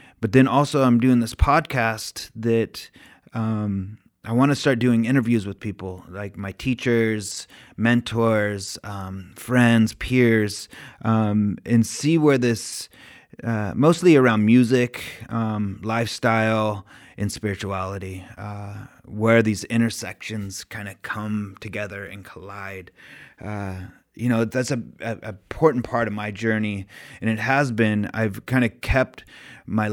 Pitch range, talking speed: 100-120 Hz, 135 wpm